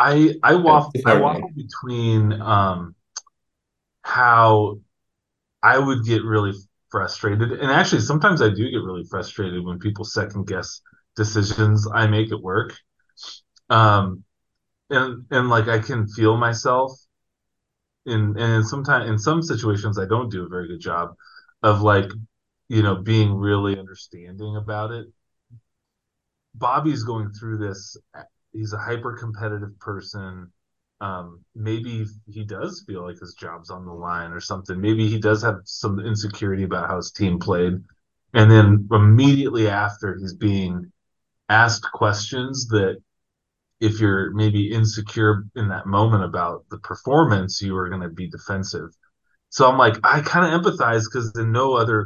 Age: 20-39